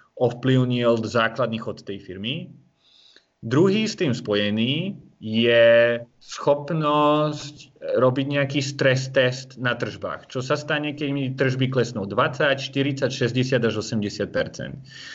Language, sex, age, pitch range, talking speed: Czech, male, 30-49, 115-150 Hz, 100 wpm